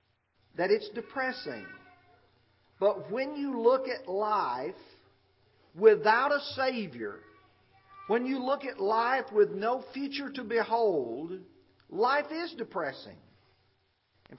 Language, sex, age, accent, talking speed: English, male, 50-69, American, 110 wpm